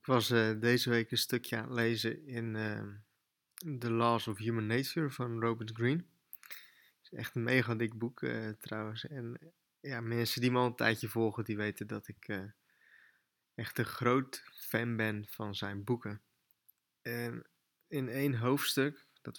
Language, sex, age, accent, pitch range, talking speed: Dutch, male, 20-39, Dutch, 110-125 Hz, 170 wpm